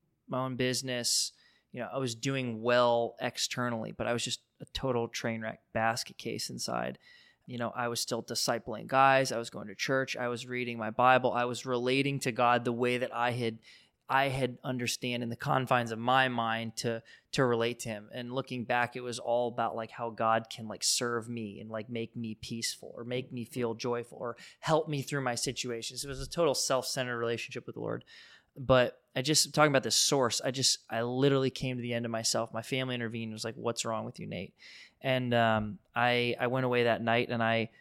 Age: 20-39